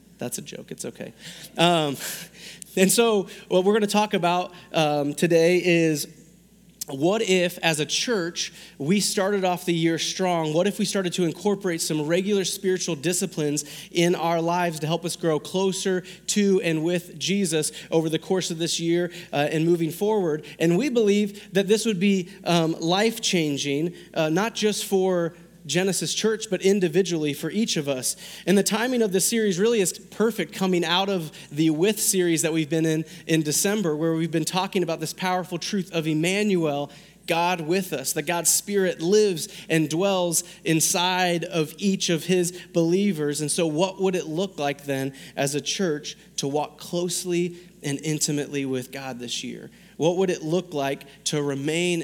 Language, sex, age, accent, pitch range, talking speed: English, male, 30-49, American, 160-190 Hz, 175 wpm